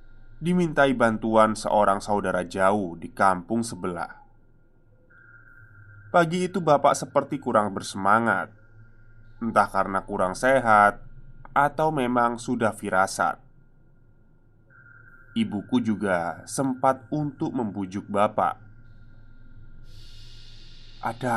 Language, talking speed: Indonesian, 80 wpm